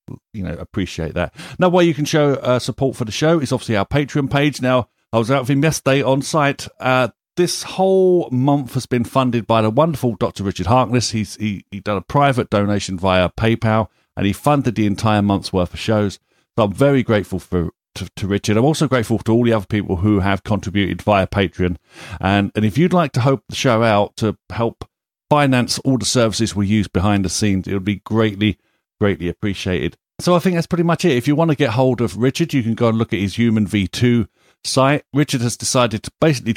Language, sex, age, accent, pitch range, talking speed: English, male, 50-69, British, 100-130 Hz, 225 wpm